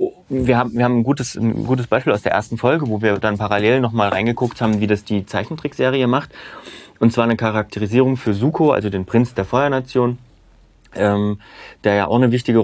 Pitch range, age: 100-125 Hz, 30-49